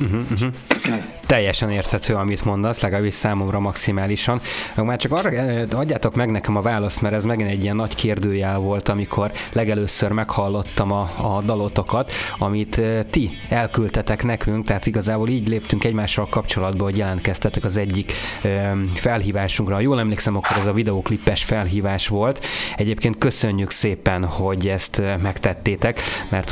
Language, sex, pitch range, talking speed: Hungarian, male, 100-115 Hz, 140 wpm